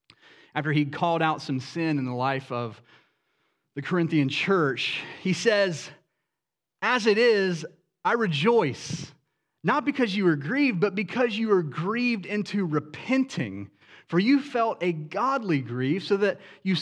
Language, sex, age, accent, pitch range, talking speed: English, male, 30-49, American, 165-240 Hz, 145 wpm